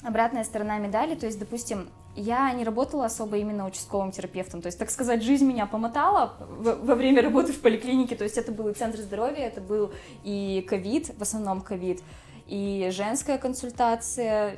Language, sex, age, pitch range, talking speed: Russian, female, 20-39, 200-240 Hz, 175 wpm